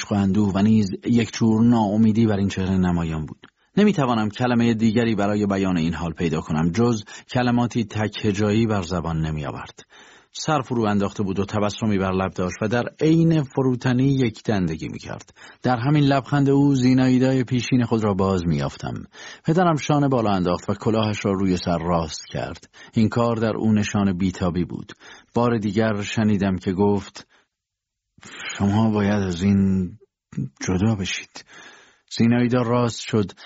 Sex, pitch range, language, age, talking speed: male, 95-120 Hz, Persian, 40-59, 155 wpm